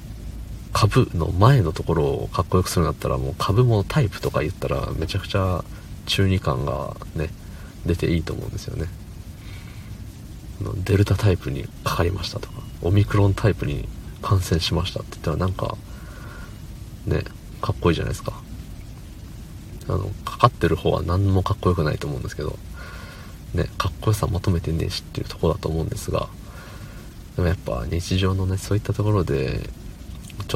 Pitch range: 85-105 Hz